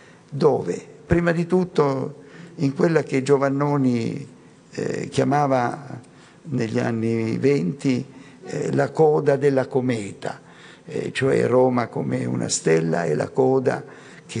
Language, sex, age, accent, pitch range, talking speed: Italian, male, 50-69, native, 120-145 Hz, 115 wpm